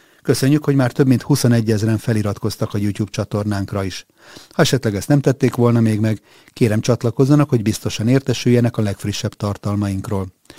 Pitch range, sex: 105-125 Hz, male